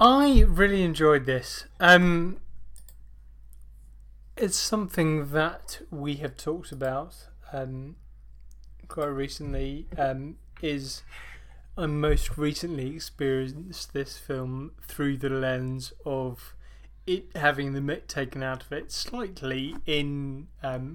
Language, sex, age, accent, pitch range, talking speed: English, male, 20-39, British, 130-150 Hz, 110 wpm